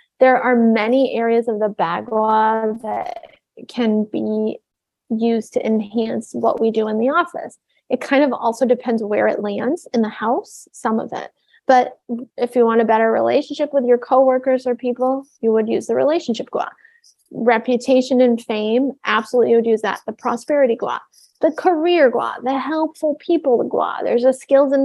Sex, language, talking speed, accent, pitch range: female, English, 175 wpm, American, 225-265 Hz